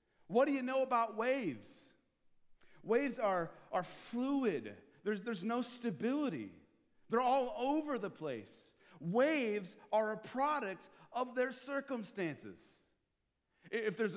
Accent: American